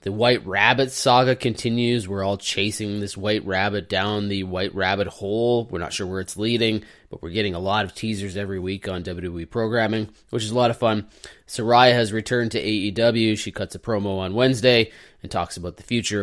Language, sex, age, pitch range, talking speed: English, male, 20-39, 100-125 Hz, 205 wpm